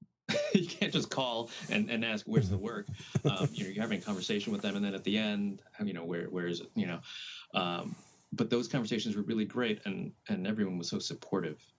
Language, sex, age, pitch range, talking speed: English, male, 30-49, 90-145 Hz, 230 wpm